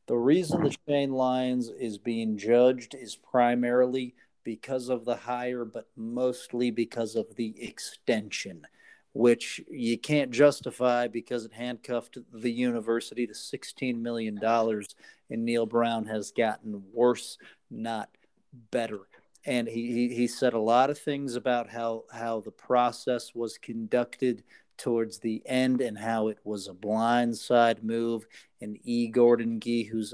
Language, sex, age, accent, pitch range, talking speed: English, male, 40-59, American, 115-125 Hz, 140 wpm